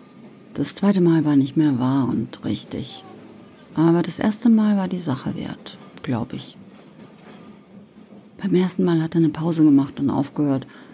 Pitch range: 150-195 Hz